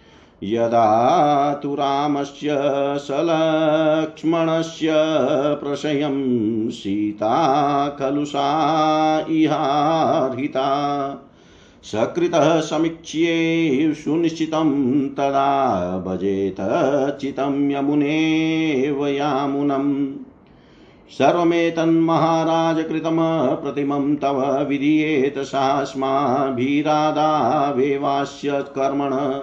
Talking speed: 45 wpm